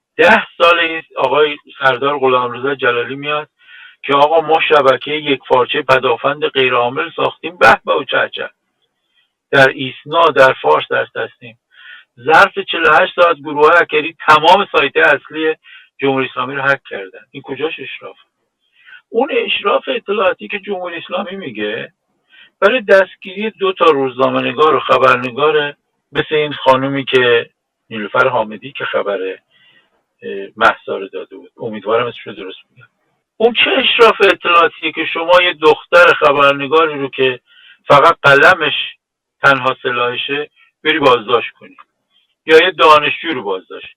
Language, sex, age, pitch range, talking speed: Persian, male, 50-69, 140-220 Hz, 125 wpm